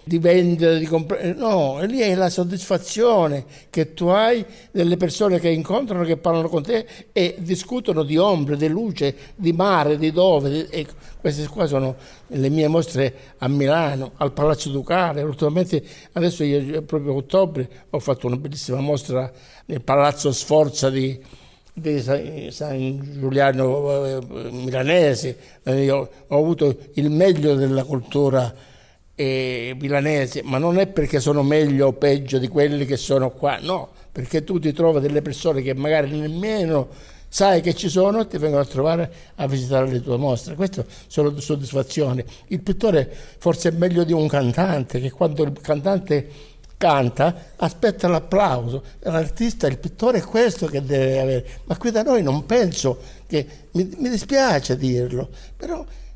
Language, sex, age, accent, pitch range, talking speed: Italian, male, 60-79, native, 135-175 Hz, 155 wpm